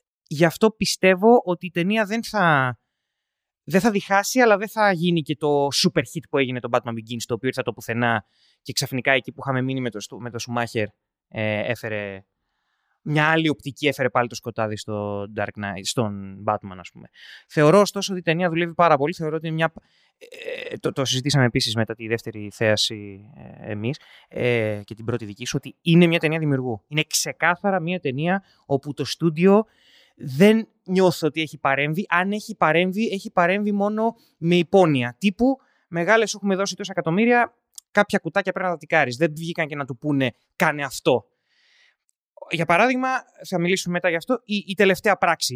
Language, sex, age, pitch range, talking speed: Greek, male, 20-39, 130-195 Hz, 180 wpm